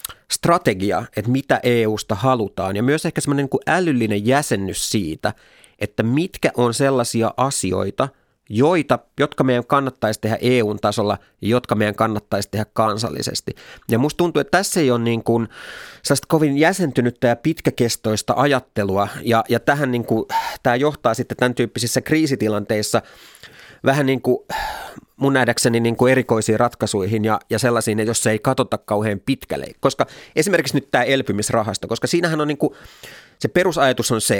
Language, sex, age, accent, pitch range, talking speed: Finnish, male, 30-49, native, 105-135 Hz, 145 wpm